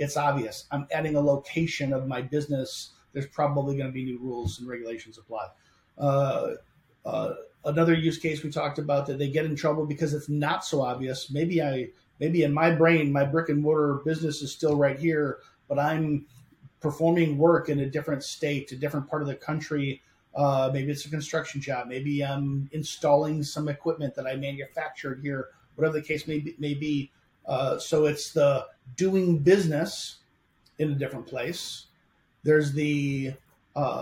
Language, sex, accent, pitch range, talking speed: English, male, American, 140-165 Hz, 180 wpm